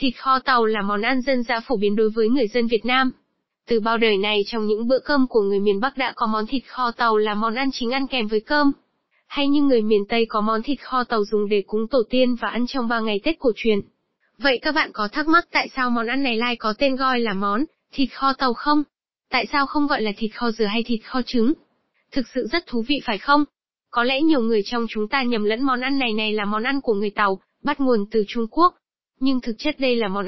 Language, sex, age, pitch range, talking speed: Vietnamese, female, 10-29, 220-270 Hz, 270 wpm